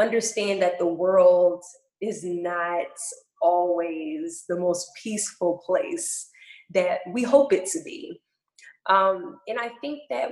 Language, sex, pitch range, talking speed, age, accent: English, female, 175-235 Hz, 130 wpm, 20-39, American